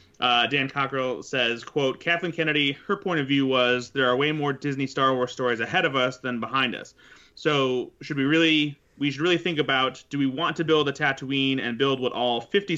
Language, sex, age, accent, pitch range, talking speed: English, male, 30-49, American, 125-150 Hz, 220 wpm